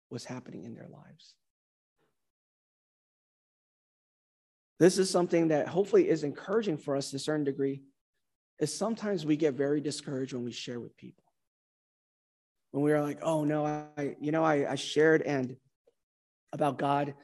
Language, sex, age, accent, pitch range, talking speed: English, male, 30-49, American, 135-155 Hz, 155 wpm